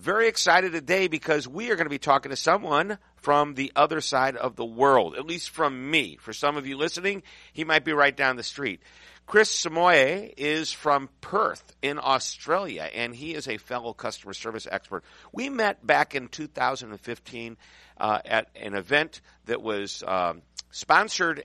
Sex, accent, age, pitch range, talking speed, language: male, American, 50-69, 105-150 Hz, 175 wpm, English